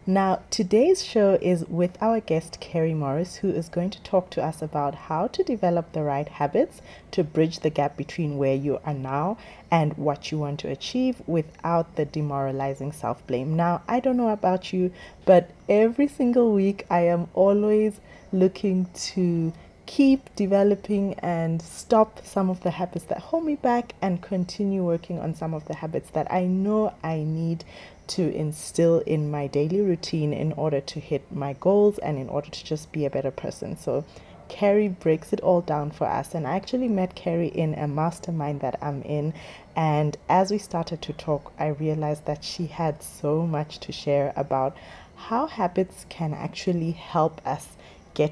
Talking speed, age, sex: 180 wpm, 30-49, female